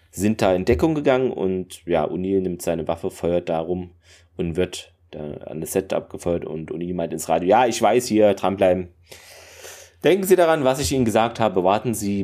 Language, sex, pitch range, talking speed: German, male, 85-100 Hz, 195 wpm